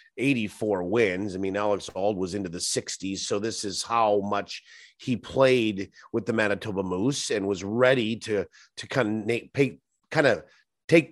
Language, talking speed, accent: English, 175 wpm, American